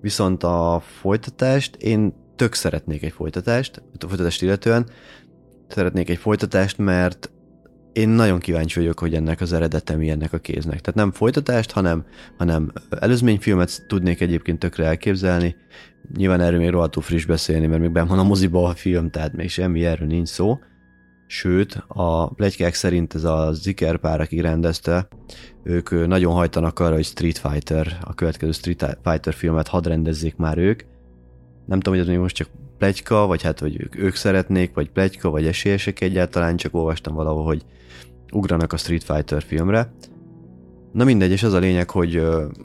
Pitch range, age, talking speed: 80-95 Hz, 30-49, 160 wpm